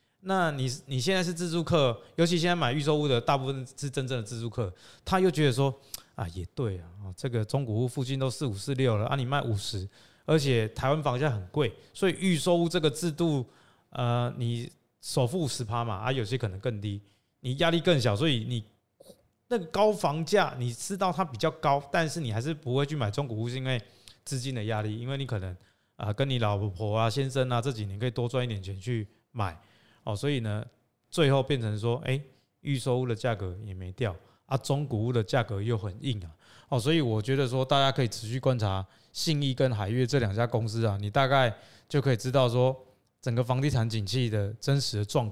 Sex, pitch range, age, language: male, 110-140 Hz, 20-39, Chinese